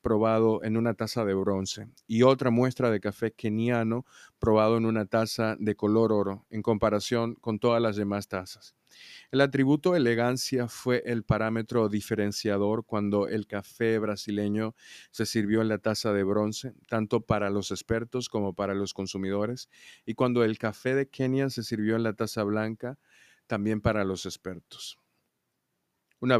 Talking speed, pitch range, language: 155 wpm, 100-115 Hz, Spanish